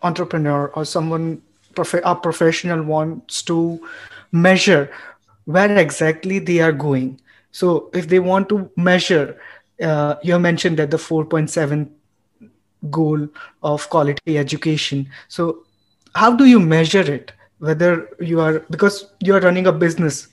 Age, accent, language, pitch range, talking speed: 20-39, Indian, English, 155-190 Hz, 130 wpm